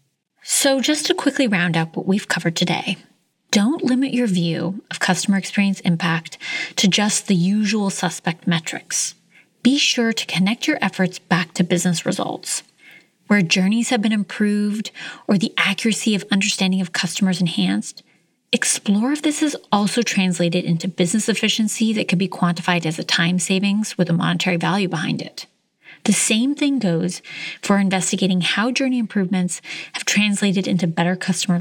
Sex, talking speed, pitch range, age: female, 160 wpm, 180-225 Hz, 30-49